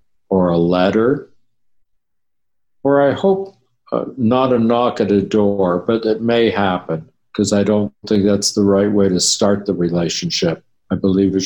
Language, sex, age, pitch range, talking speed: English, male, 60-79, 95-115 Hz, 170 wpm